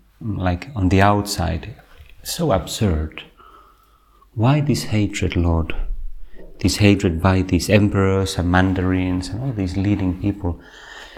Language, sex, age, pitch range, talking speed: Finnish, male, 30-49, 85-100 Hz, 120 wpm